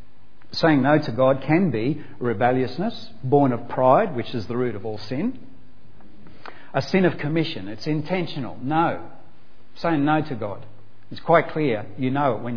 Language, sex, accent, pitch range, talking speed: English, male, Australian, 115-145 Hz, 165 wpm